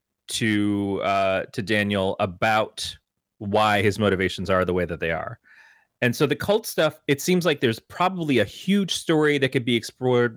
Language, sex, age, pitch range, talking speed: English, male, 30-49, 105-125 Hz, 180 wpm